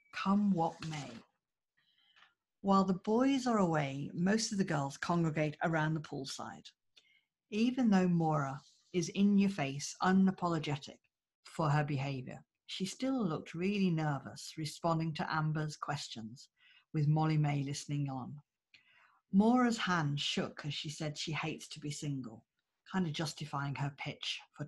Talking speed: 140 wpm